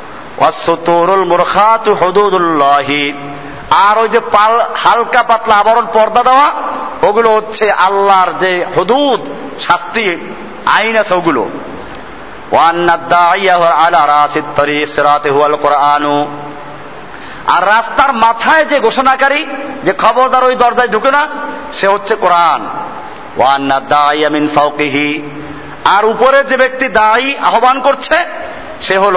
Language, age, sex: Bengali, 50-69, male